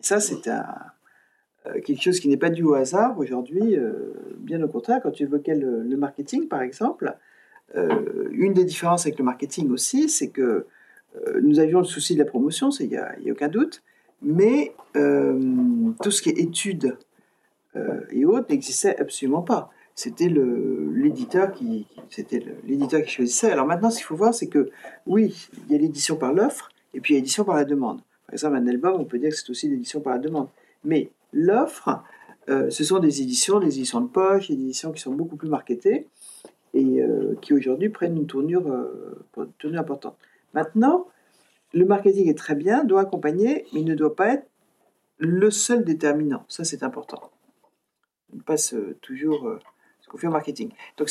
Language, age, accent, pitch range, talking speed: French, 40-59, French, 150-255 Hz, 195 wpm